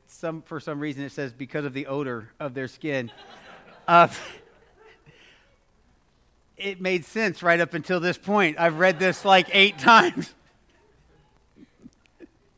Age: 40-59